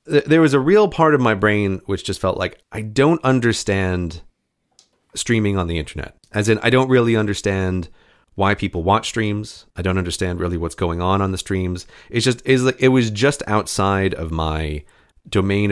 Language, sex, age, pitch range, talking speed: English, male, 30-49, 90-125 Hz, 190 wpm